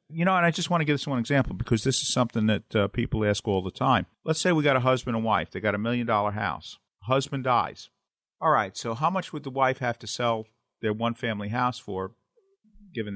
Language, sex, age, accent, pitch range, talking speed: English, male, 50-69, American, 100-130 Hz, 250 wpm